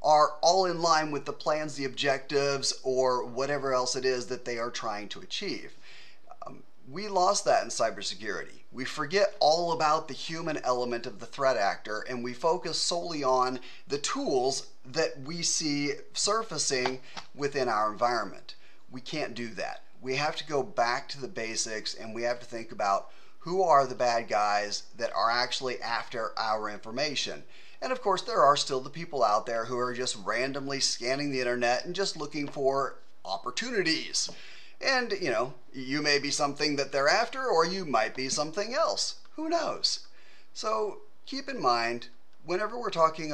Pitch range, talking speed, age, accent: 125-165 Hz, 175 wpm, 30-49, American